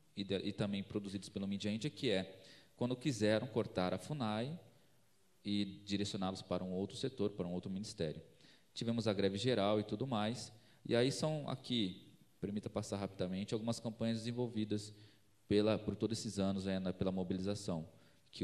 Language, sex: Portuguese, male